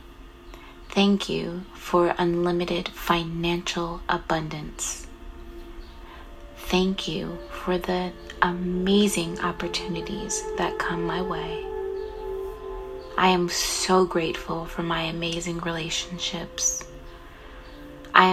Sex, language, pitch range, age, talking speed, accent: female, English, 175-195 Hz, 20-39, 80 wpm, American